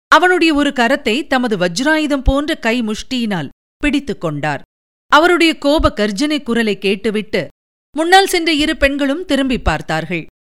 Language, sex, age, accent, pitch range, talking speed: Tamil, female, 50-69, native, 210-300 Hz, 120 wpm